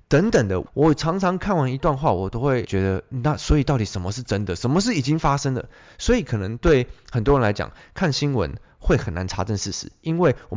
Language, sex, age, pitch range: Chinese, male, 20-39, 100-140 Hz